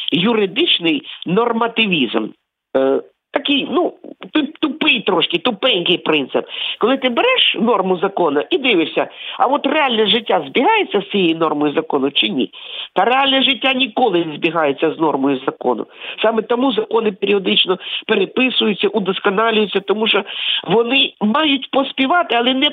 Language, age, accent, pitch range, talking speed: Ukrainian, 50-69, native, 180-265 Hz, 130 wpm